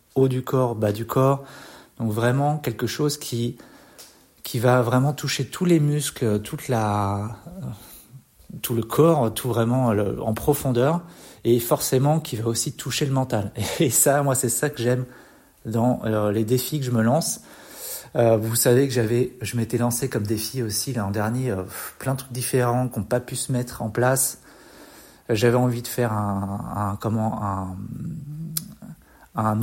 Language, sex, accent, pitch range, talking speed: French, male, French, 115-135 Hz, 175 wpm